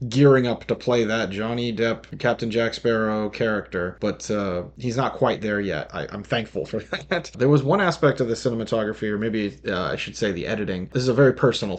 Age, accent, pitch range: 30-49, American, 105-125 Hz